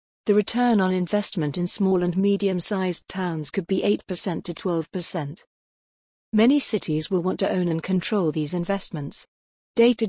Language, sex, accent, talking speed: English, female, British, 160 wpm